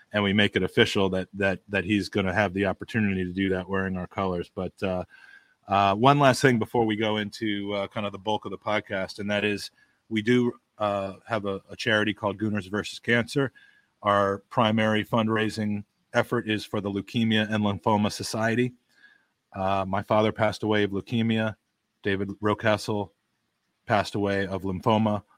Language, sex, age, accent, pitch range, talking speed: English, male, 30-49, American, 95-110 Hz, 180 wpm